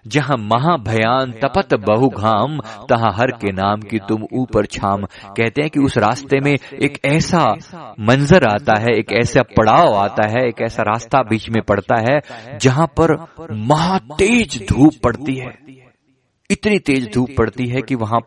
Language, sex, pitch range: Hindi, male, 110-145 Hz